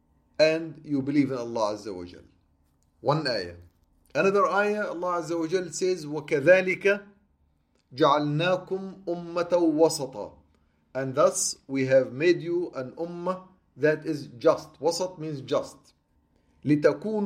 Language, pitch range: English, 135-175 Hz